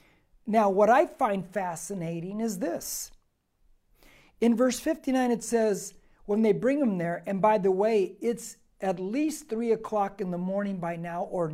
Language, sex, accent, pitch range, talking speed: English, male, American, 200-255 Hz, 165 wpm